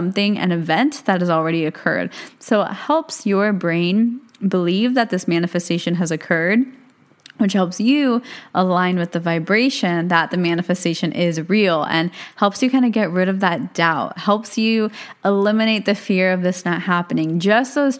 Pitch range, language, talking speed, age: 175-225 Hz, English, 170 wpm, 20-39